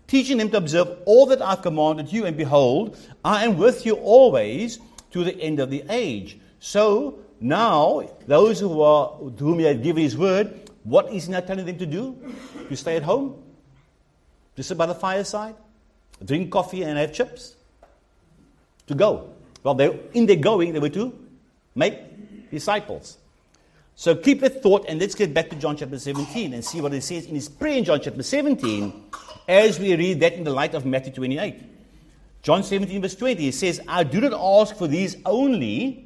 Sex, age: male, 50-69